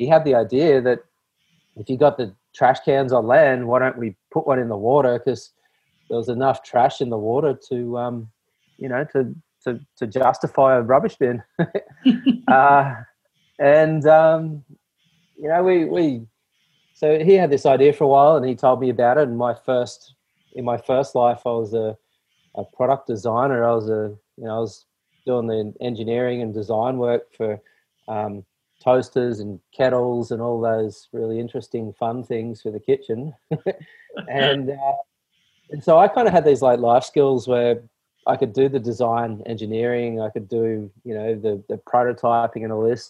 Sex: male